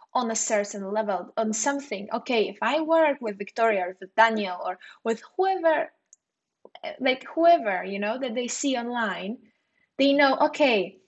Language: English